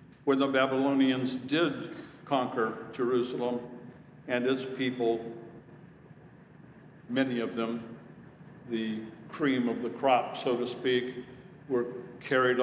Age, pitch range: 60-79, 125-175 Hz